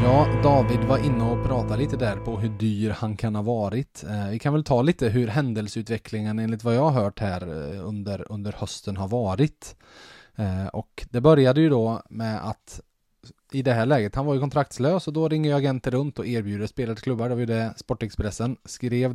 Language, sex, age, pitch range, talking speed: Swedish, male, 20-39, 100-125 Hz, 205 wpm